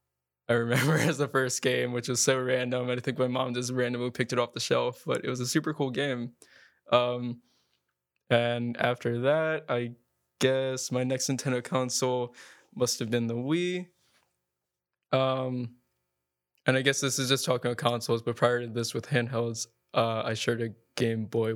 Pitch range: 115-125 Hz